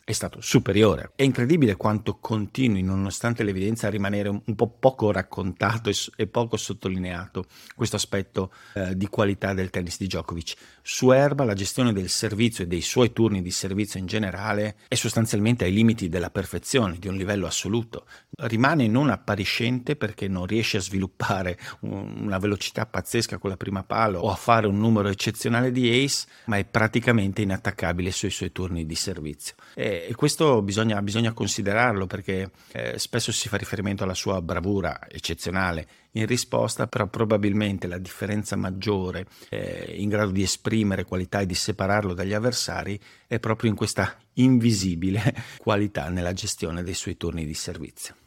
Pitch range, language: 95-115 Hz, Italian